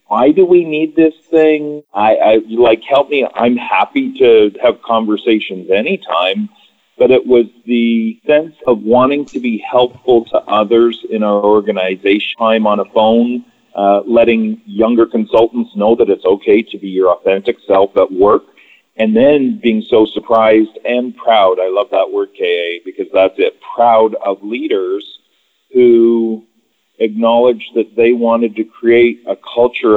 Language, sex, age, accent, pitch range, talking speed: English, male, 40-59, American, 105-145 Hz, 160 wpm